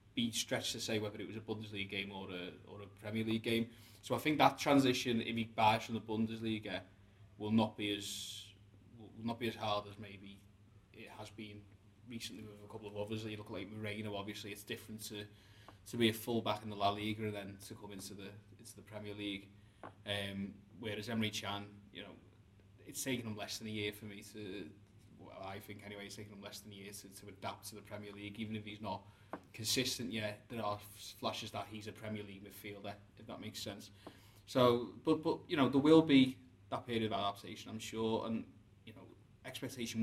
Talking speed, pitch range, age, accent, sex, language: 220 wpm, 100-115 Hz, 20-39, British, male, English